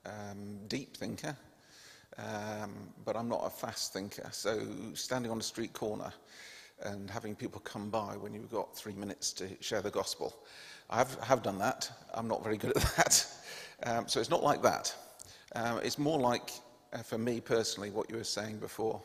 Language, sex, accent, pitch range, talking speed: English, male, British, 105-120 Hz, 190 wpm